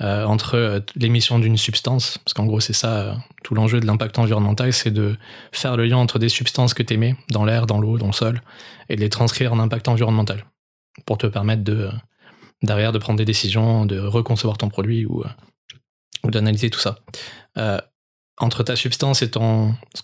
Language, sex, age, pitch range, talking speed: French, male, 20-39, 110-120 Hz, 190 wpm